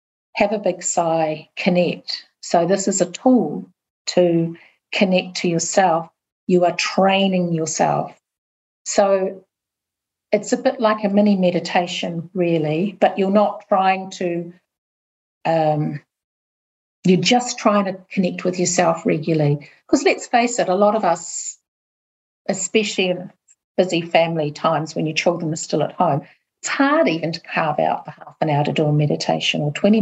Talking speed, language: 155 wpm, English